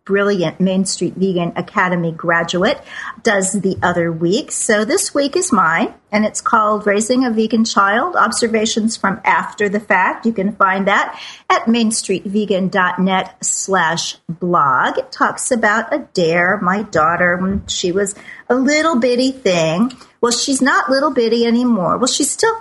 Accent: American